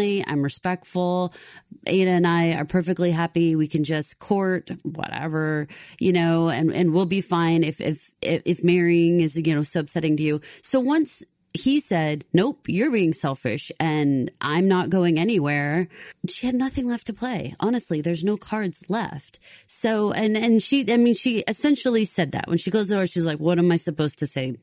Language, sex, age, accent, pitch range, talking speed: English, female, 30-49, American, 165-215 Hz, 190 wpm